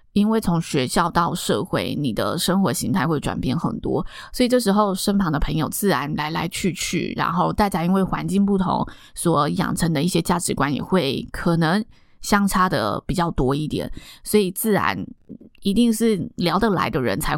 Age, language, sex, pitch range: 20-39, Chinese, female, 160-200 Hz